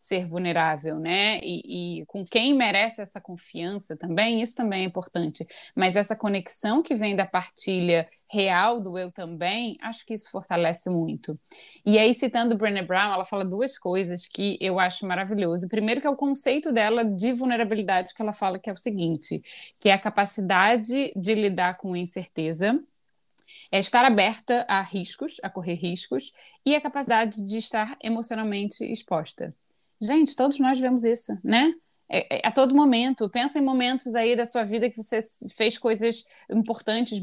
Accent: Brazilian